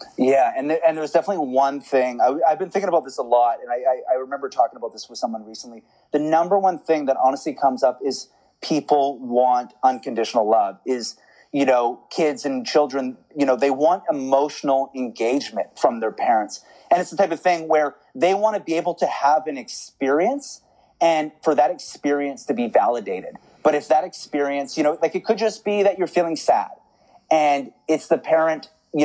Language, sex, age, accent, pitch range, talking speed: English, male, 30-49, American, 135-170 Hz, 200 wpm